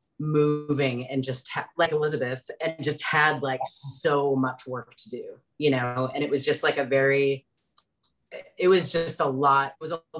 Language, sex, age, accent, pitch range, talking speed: English, female, 30-49, American, 130-150 Hz, 180 wpm